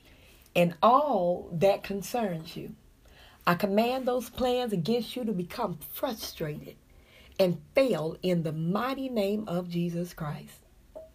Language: English